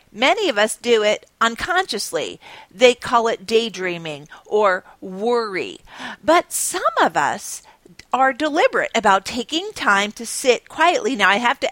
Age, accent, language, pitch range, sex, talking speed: 40-59, American, English, 195-265 Hz, female, 145 wpm